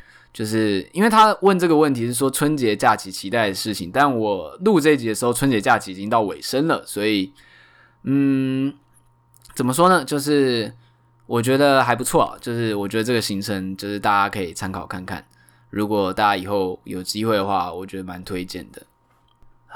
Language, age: Chinese, 20-39